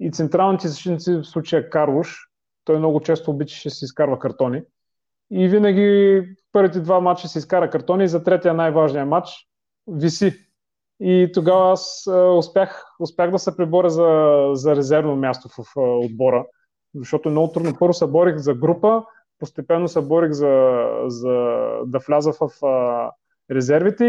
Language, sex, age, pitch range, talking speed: Bulgarian, male, 30-49, 140-180 Hz, 155 wpm